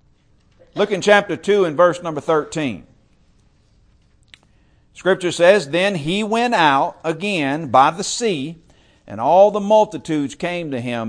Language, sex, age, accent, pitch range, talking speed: English, male, 50-69, American, 145-200 Hz, 135 wpm